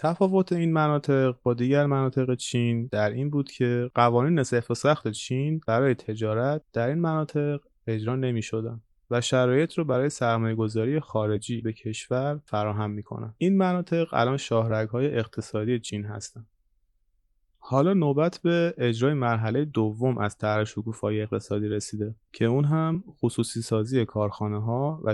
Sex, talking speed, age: male, 150 wpm, 20-39